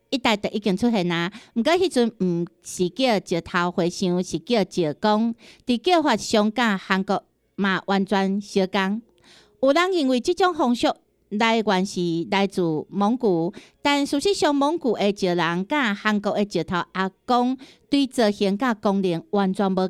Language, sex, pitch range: Chinese, female, 190-265 Hz